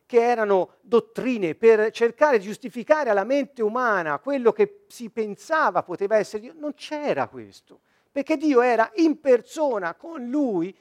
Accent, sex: native, male